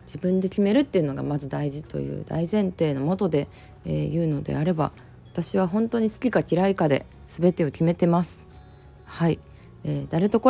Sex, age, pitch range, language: female, 20-39, 150-210 Hz, Japanese